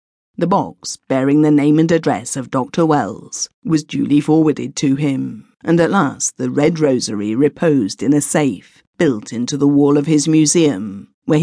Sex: female